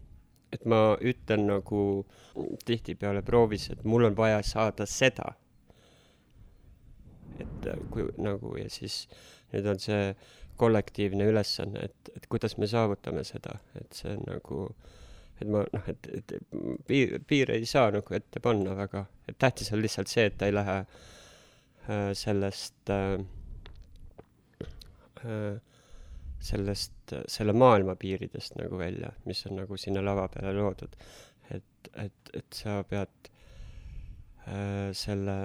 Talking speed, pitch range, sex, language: 125 wpm, 95-110 Hz, male, English